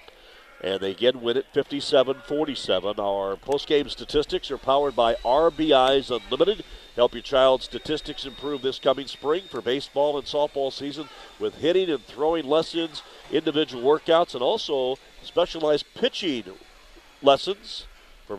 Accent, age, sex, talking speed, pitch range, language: American, 50-69, male, 130 wpm, 110-145 Hz, English